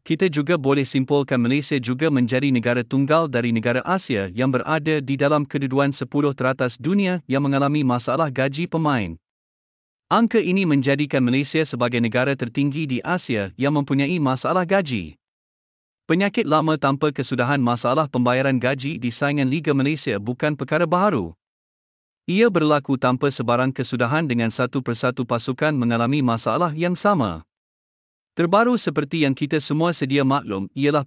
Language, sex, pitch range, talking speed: Malay, male, 125-160 Hz, 140 wpm